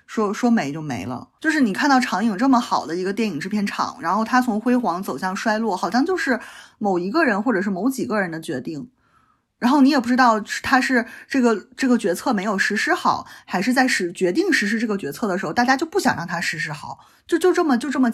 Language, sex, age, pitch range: Chinese, female, 20-39, 190-250 Hz